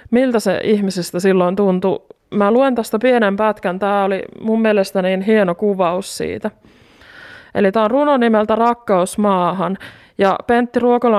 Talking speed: 145 wpm